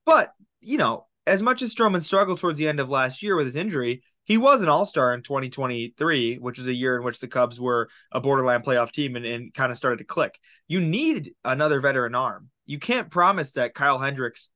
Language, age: English, 20-39